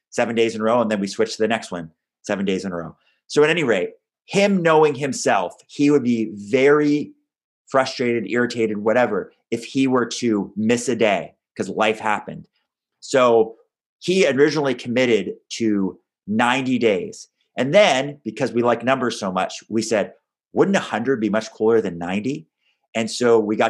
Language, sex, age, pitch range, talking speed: English, male, 30-49, 110-145 Hz, 175 wpm